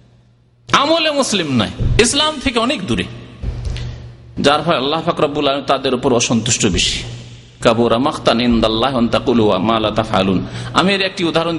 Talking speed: 55 wpm